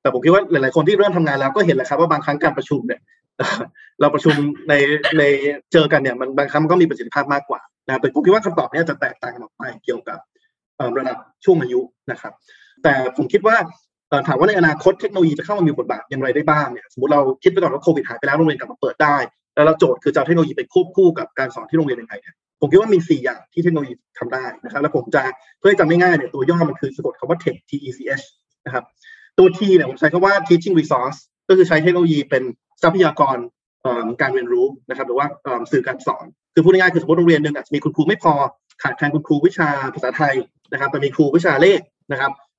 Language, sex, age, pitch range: Thai, male, 20-39, 145-205 Hz